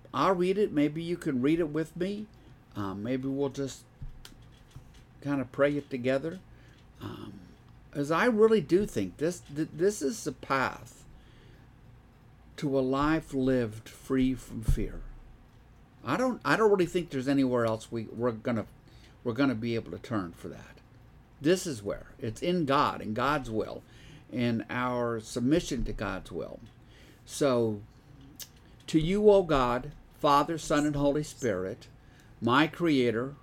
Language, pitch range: English, 120-150 Hz